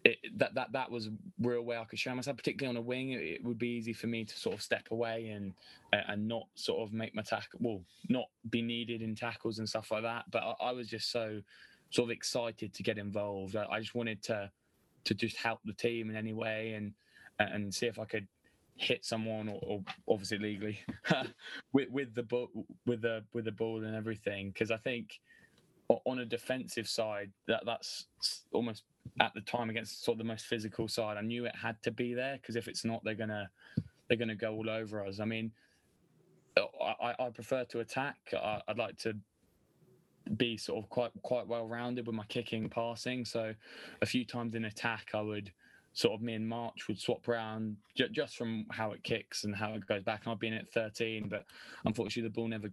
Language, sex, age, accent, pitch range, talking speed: English, male, 20-39, British, 110-120 Hz, 215 wpm